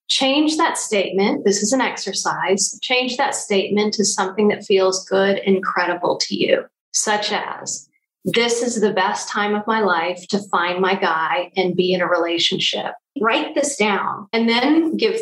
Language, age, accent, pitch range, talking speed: English, 40-59, American, 185-235 Hz, 175 wpm